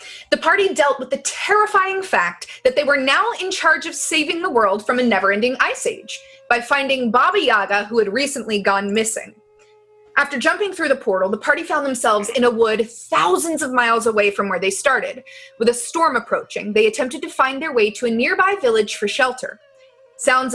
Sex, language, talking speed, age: female, English, 200 wpm, 20-39